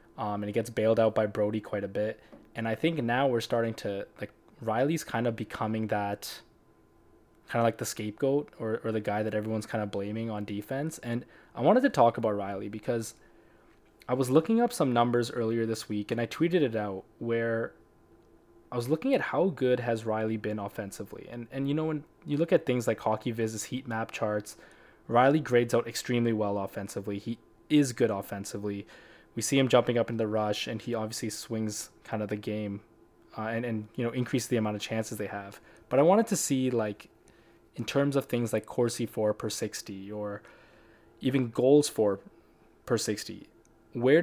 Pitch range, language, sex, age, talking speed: 105-125 Hz, English, male, 20-39, 200 wpm